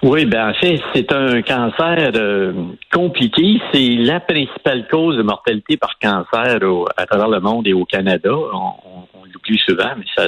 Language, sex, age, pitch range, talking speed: French, male, 60-79, 105-150 Hz, 185 wpm